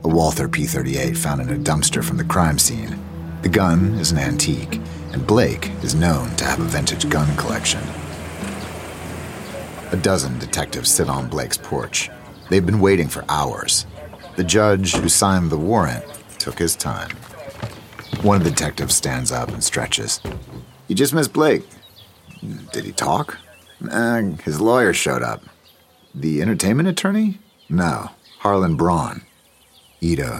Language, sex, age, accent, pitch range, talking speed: English, male, 40-59, American, 75-95 Hz, 140 wpm